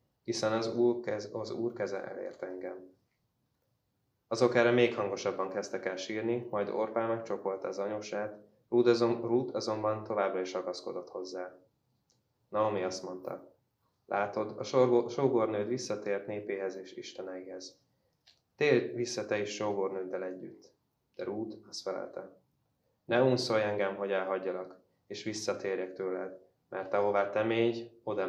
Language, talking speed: Hungarian, 135 wpm